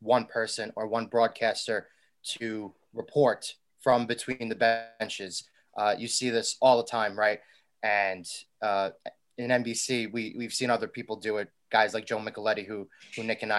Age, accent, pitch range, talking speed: 20-39, American, 105-125 Hz, 170 wpm